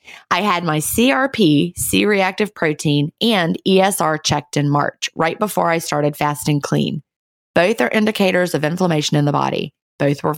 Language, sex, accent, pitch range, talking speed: English, female, American, 150-200 Hz, 155 wpm